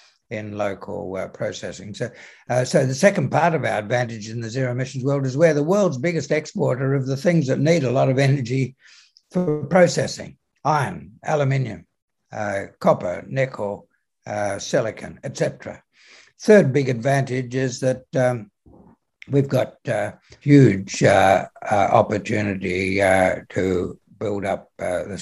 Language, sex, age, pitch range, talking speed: English, male, 60-79, 100-135 Hz, 150 wpm